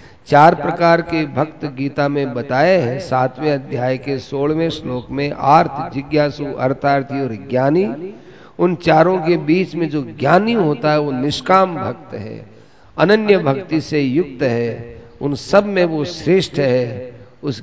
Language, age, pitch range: Hindi, 50-69, 130-165 Hz